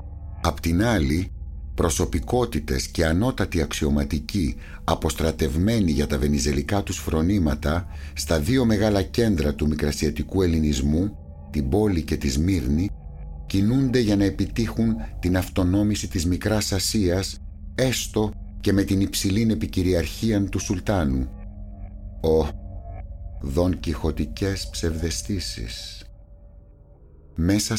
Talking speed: 100 wpm